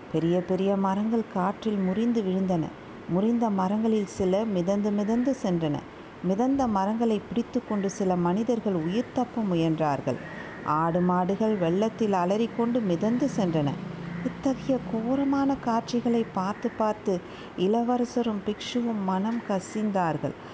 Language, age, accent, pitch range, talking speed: Tamil, 50-69, native, 180-225 Hz, 100 wpm